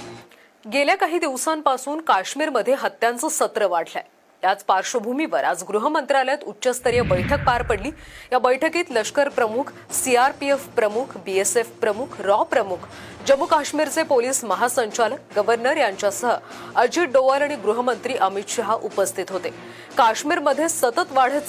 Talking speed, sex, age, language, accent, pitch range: 115 wpm, female, 30-49, Marathi, native, 215-285 Hz